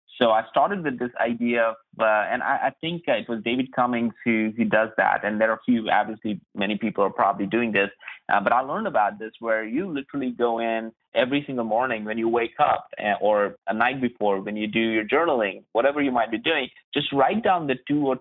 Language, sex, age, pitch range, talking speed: English, male, 30-49, 105-130 Hz, 230 wpm